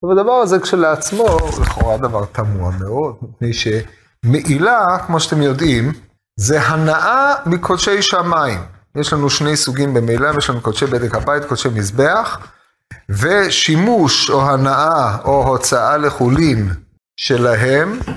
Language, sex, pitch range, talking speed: Hebrew, male, 115-165 Hz, 115 wpm